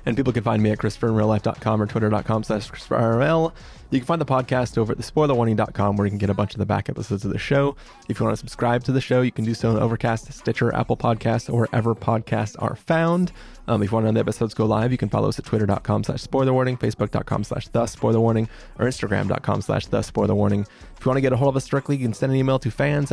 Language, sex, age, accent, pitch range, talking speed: English, male, 20-39, American, 110-130 Hz, 260 wpm